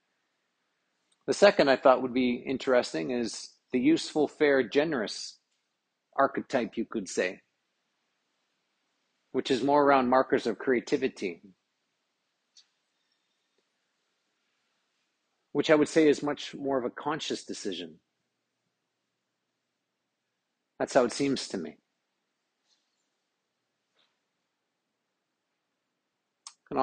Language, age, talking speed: English, 50-69, 90 wpm